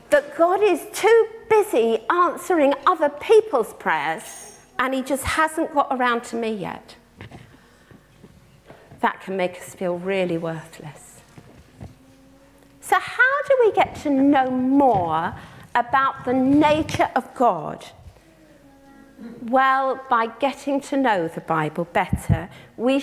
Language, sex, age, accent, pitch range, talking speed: English, female, 40-59, British, 205-300 Hz, 120 wpm